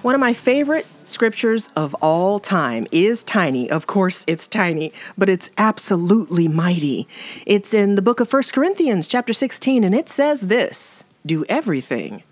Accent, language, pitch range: American, English, 180-260 Hz